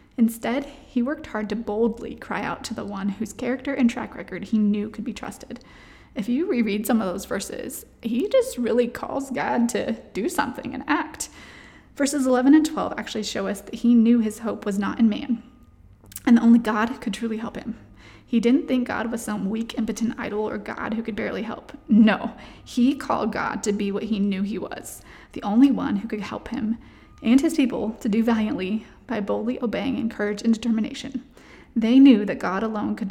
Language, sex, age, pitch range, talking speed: English, female, 20-39, 215-255 Hz, 205 wpm